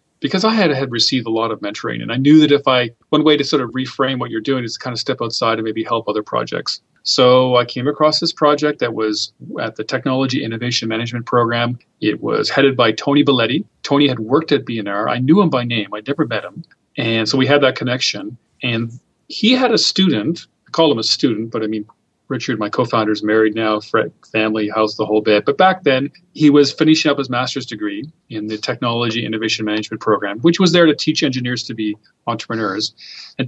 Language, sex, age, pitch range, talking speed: English, male, 40-59, 110-150 Hz, 225 wpm